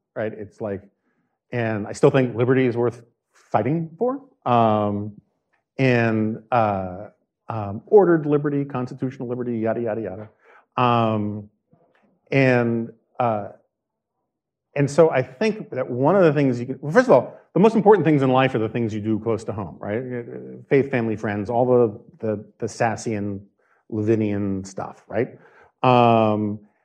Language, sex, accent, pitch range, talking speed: English, male, American, 110-145 Hz, 150 wpm